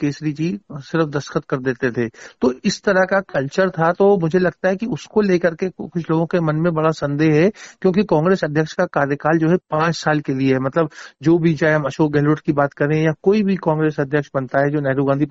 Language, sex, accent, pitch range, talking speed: Hindi, male, native, 140-165 Hz, 240 wpm